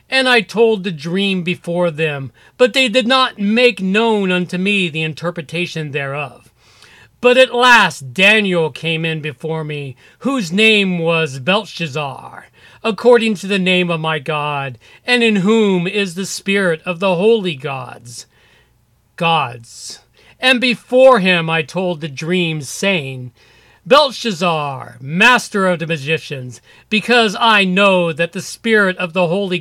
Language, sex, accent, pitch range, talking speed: English, male, American, 160-220 Hz, 140 wpm